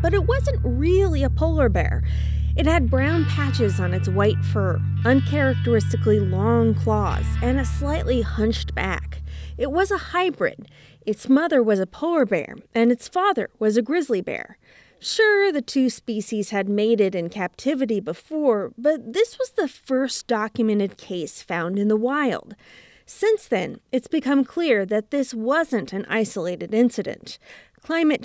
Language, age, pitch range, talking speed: English, 30-49, 175-275 Hz, 155 wpm